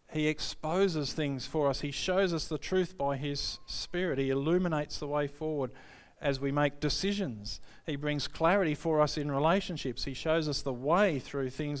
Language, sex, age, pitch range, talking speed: English, male, 50-69, 120-140 Hz, 185 wpm